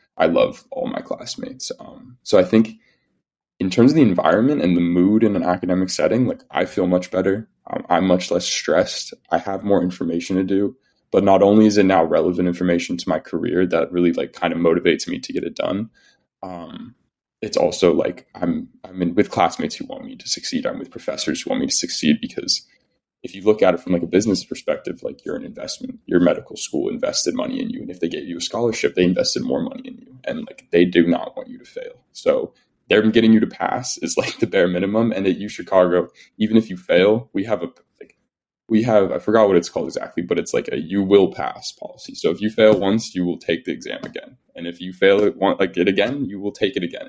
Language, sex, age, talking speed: English, male, 20-39, 240 wpm